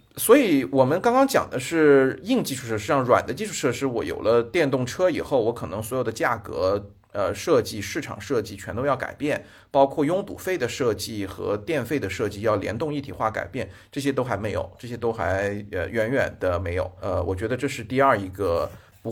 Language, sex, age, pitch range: Chinese, male, 30-49, 105-155 Hz